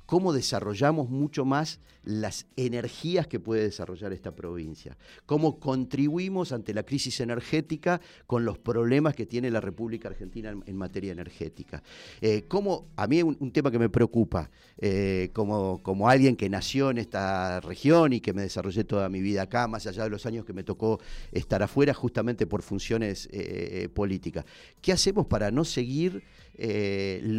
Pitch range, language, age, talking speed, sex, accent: 105-140 Hz, Spanish, 40-59, 170 wpm, male, Argentinian